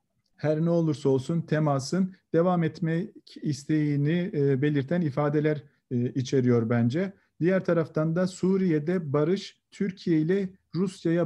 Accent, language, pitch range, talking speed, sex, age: native, Turkish, 145-175 Hz, 105 wpm, male, 50-69